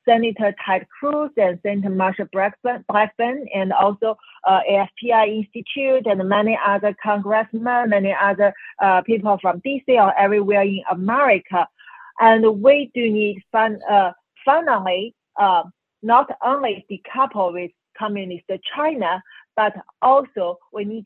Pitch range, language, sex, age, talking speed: 200-245 Hz, English, female, 40-59, 125 wpm